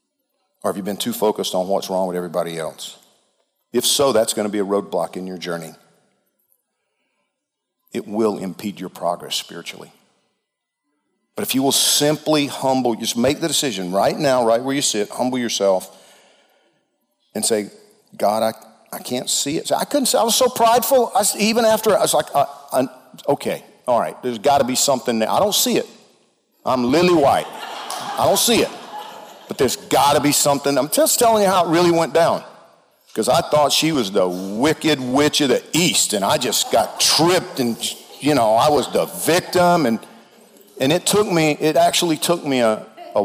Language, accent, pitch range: English, American, 110-175 Hz